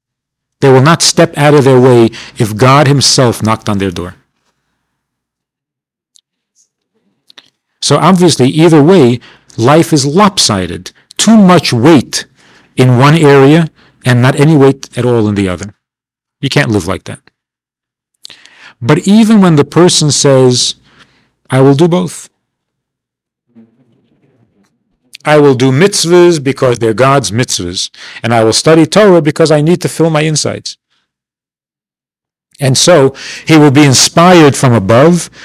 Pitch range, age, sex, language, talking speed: 120-155 Hz, 50-69, male, English, 135 wpm